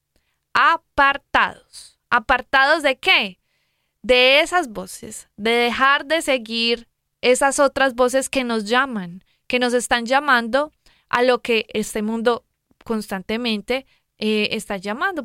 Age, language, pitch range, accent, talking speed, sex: 20-39, Spanish, 215-260 Hz, Colombian, 120 wpm, female